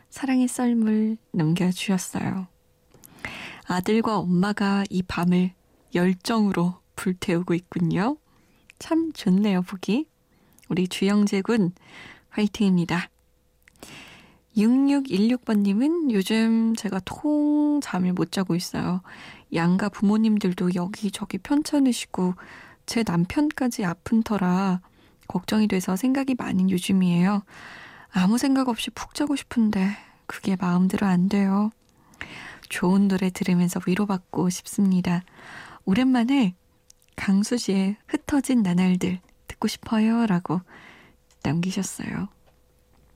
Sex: female